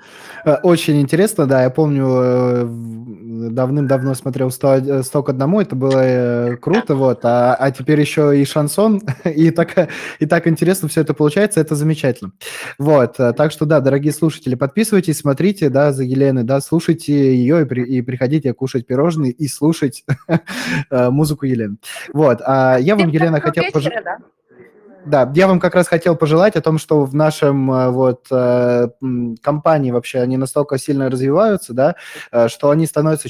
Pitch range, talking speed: 125-155 Hz, 145 wpm